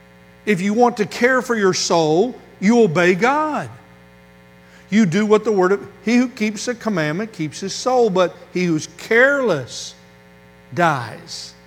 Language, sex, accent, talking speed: English, male, American, 155 wpm